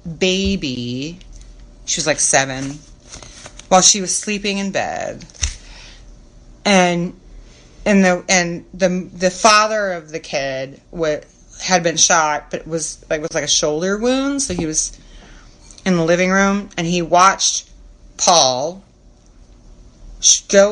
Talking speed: 130 wpm